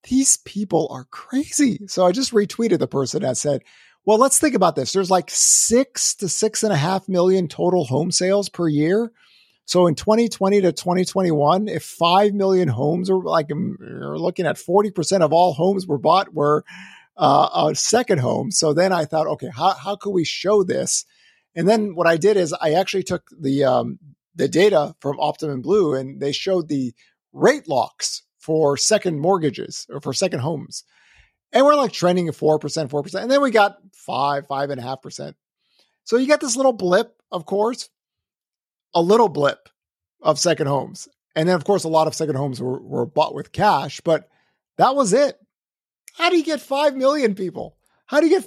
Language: English